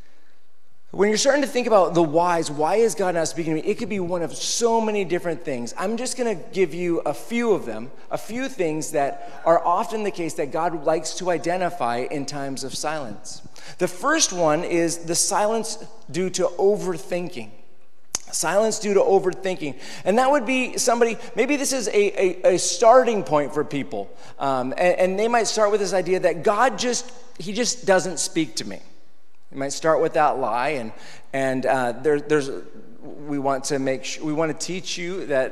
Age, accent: 40-59, American